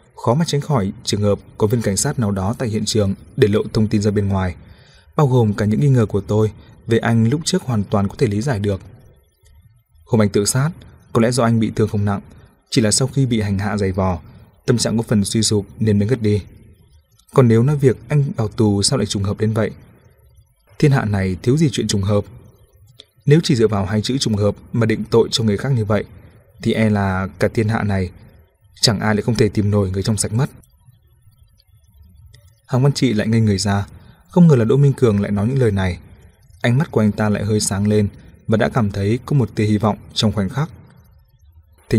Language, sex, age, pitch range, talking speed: Vietnamese, male, 20-39, 100-120 Hz, 240 wpm